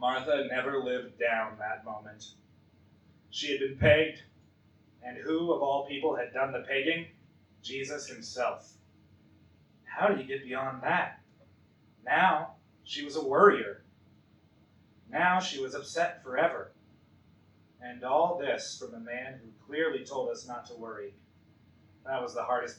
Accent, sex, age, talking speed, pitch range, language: American, male, 30-49, 140 wpm, 110-140 Hz, English